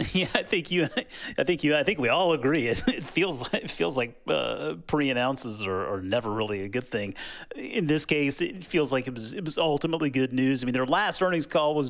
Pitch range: 120-155 Hz